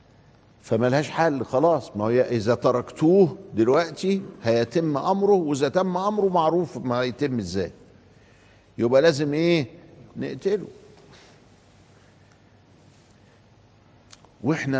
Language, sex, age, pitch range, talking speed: Arabic, male, 50-69, 110-140 Hz, 90 wpm